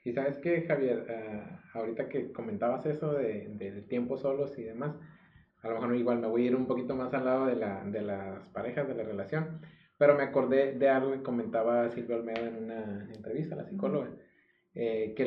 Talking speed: 210 wpm